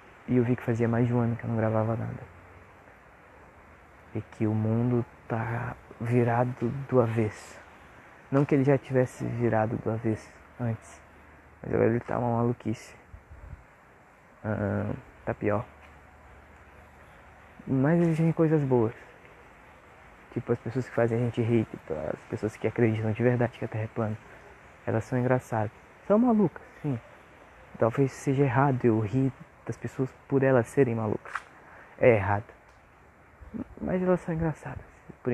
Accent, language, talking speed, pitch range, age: Brazilian, Portuguese, 150 wpm, 110-135 Hz, 20-39